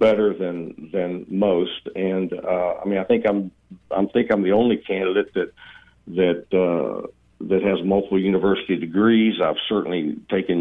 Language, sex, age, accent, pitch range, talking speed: English, male, 60-79, American, 85-105 Hz, 160 wpm